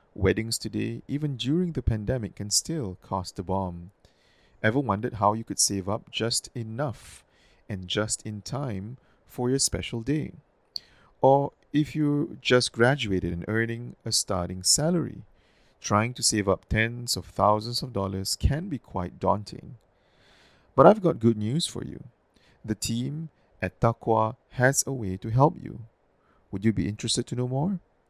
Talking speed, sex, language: 160 wpm, male, English